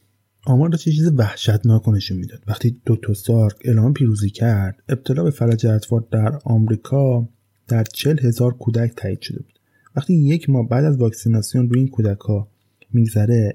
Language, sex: Persian, male